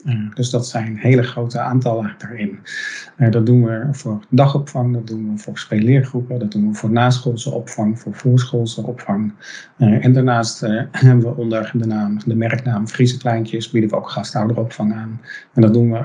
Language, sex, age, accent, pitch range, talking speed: English, male, 40-59, Dutch, 110-125 Hz, 185 wpm